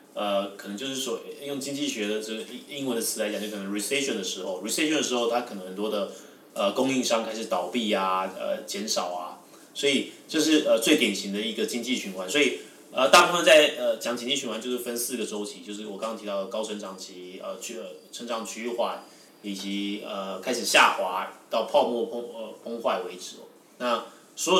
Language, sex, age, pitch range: Chinese, male, 20-39, 100-125 Hz